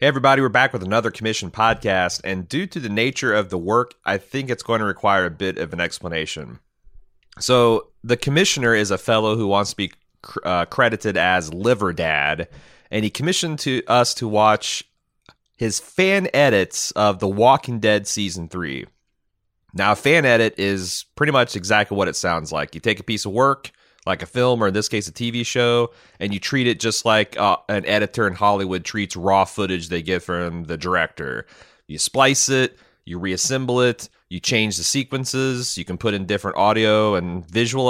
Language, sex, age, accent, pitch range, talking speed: English, male, 30-49, American, 95-125 Hz, 195 wpm